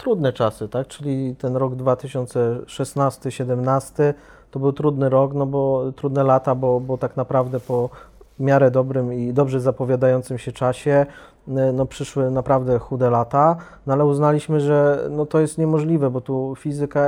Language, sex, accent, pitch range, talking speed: Polish, male, native, 130-150 Hz, 150 wpm